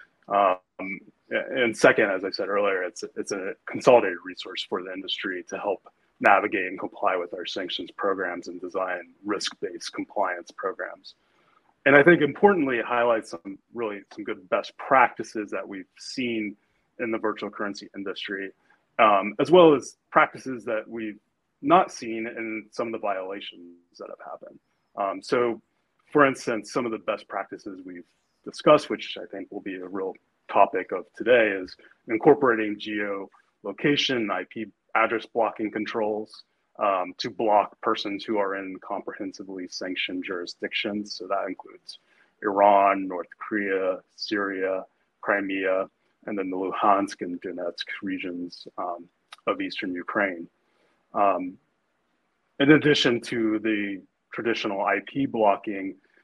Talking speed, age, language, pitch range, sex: 140 wpm, 30-49, English, 95-120 Hz, male